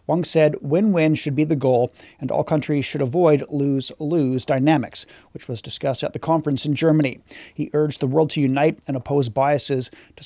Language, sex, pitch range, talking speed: English, male, 135-155 Hz, 185 wpm